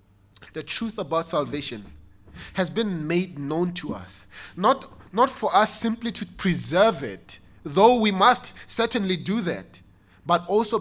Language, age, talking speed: English, 30-49, 145 wpm